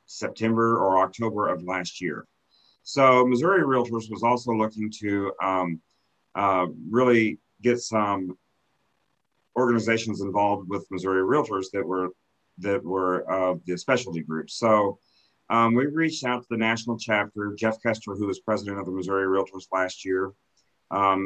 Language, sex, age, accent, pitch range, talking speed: English, male, 40-59, American, 95-115 Hz, 150 wpm